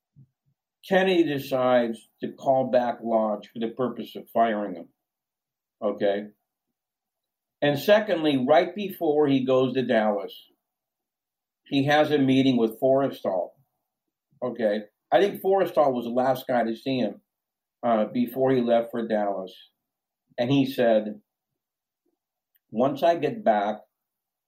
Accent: American